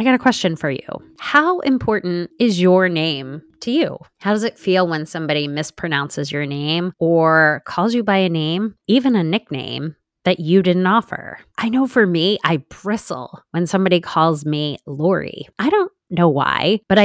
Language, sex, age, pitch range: English, female, 20-39, 150-195 Hz